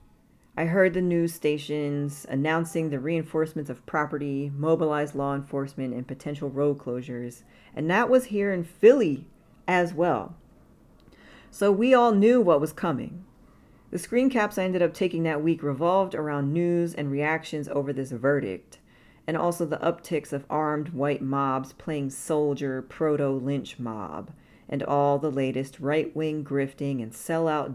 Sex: female